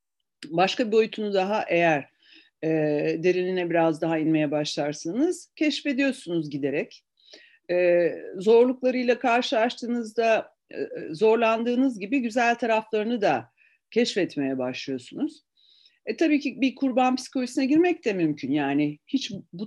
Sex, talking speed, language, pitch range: female, 110 wpm, Turkish, 185-265 Hz